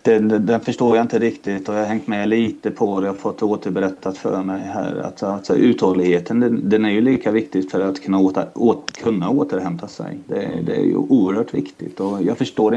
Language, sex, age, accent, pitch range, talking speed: Swedish, male, 30-49, native, 100-115 Hz, 215 wpm